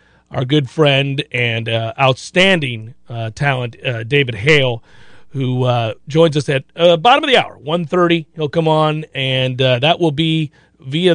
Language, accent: English, American